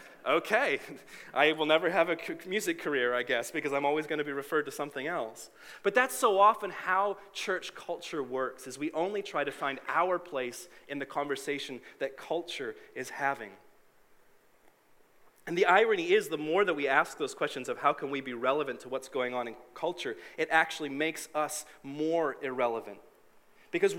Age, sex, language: 30-49, male, English